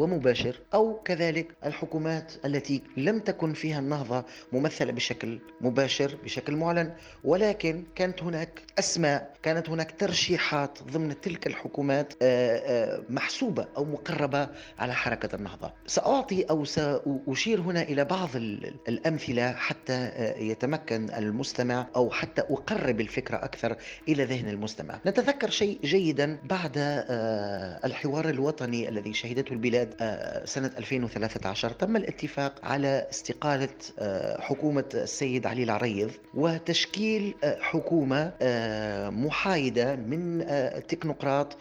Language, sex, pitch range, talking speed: Arabic, male, 130-165 Hz, 105 wpm